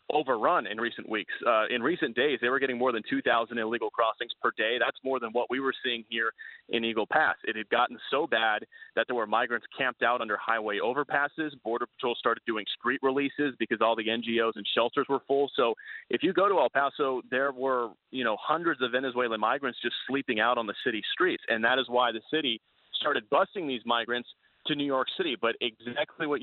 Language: English